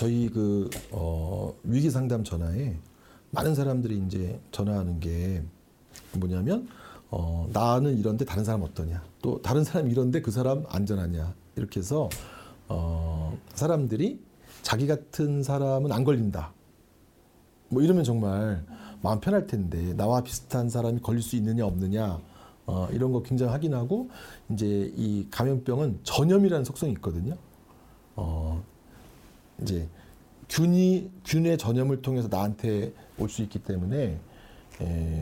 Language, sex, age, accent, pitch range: Korean, male, 40-59, native, 95-135 Hz